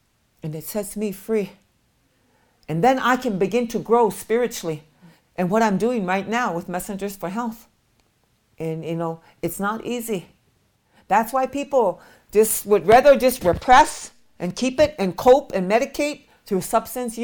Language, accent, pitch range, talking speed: English, American, 170-235 Hz, 160 wpm